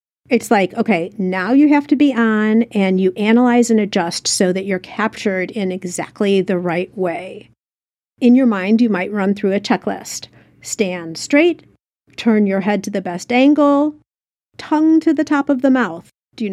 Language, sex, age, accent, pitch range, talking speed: English, female, 50-69, American, 190-245 Hz, 180 wpm